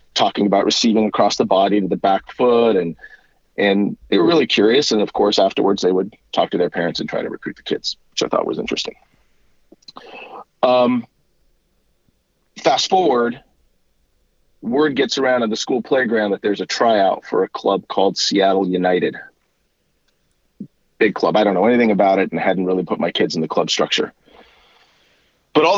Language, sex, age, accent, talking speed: English, male, 40-59, American, 180 wpm